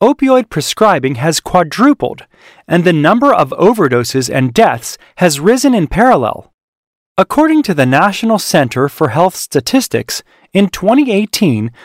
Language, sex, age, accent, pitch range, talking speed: English, male, 40-59, American, 150-235 Hz, 125 wpm